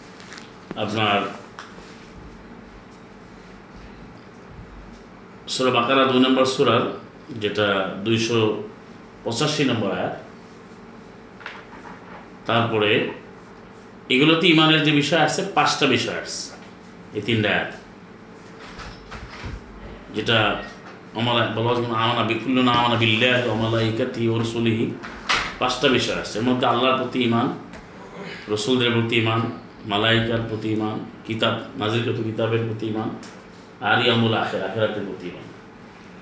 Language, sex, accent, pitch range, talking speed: Bengali, male, native, 110-135 Hz, 70 wpm